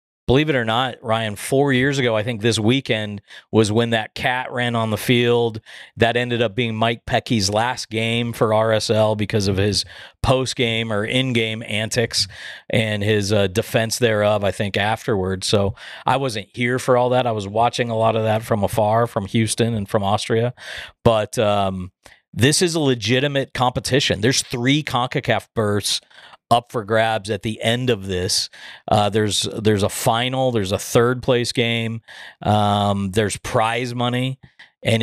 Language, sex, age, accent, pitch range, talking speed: English, male, 40-59, American, 105-125 Hz, 170 wpm